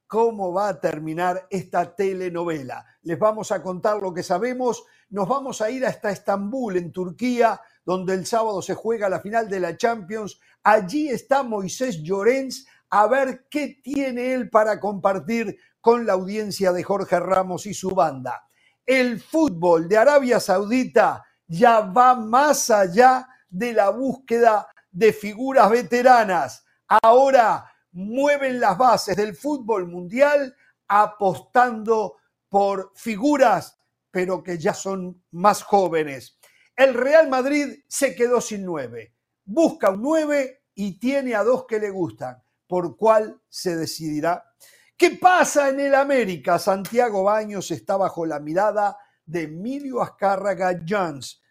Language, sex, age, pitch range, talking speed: Spanish, male, 50-69, 185-255 Hz, 135 wpm